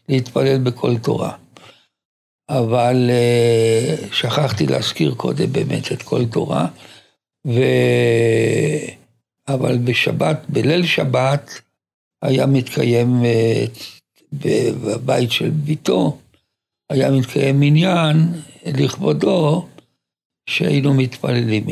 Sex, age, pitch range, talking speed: male, 60-79, 115-140 Hz, 75 wpm